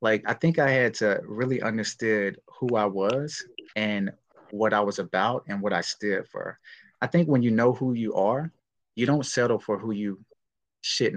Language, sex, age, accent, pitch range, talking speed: English, male, 30-49, American, 105-135 Hz, 195 wpm